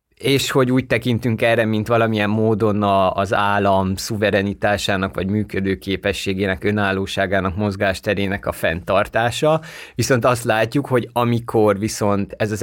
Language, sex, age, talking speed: Hungarian, male, 20-39, 125 wpm